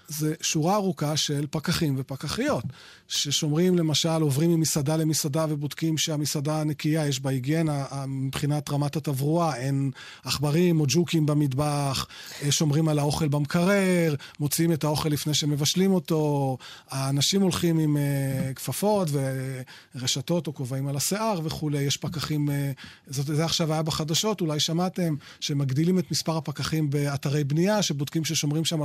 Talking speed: 135 wpm